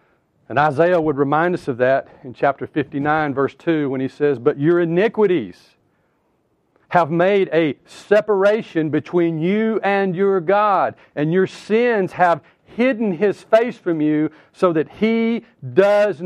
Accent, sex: American, male